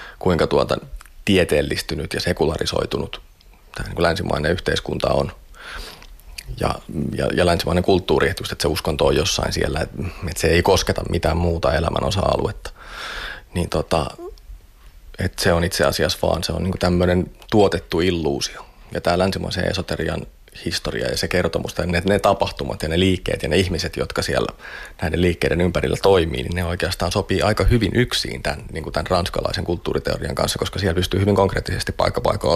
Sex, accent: male, native